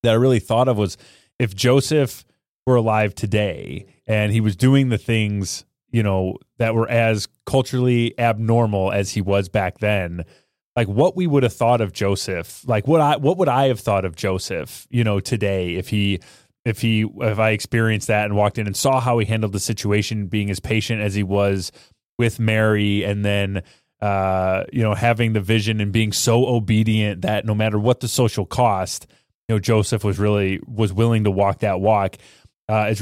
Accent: American